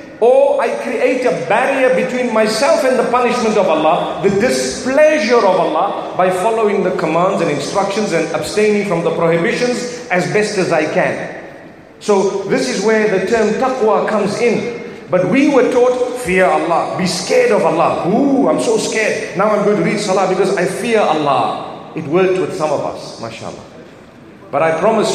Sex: male